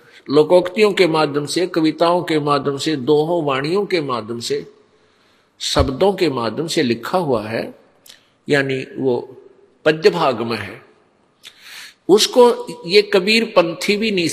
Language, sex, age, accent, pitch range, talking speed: Hindi, male, 50-69, native, 150-200 Hz, 135 wpm